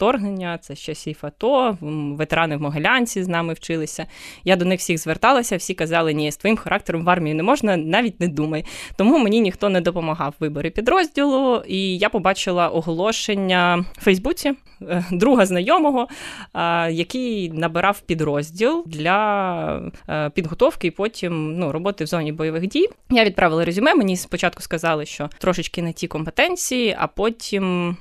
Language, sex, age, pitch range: Ukrainian, female, 20-39, 160-195 Hz